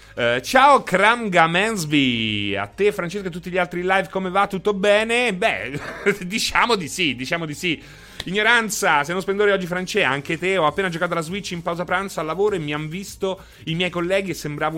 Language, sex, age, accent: Italian, male, 30-49, native